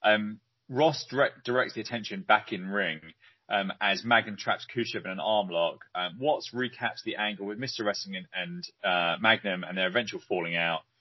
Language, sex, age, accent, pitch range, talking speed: English, male, 30-49, British, 105-135 Hz, 185 wpm